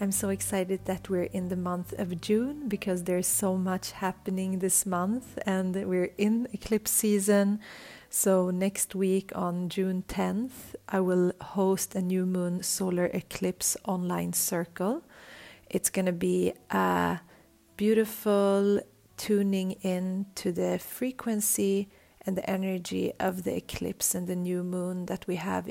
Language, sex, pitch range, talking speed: English, female, 180-200 Hz, 145 wpm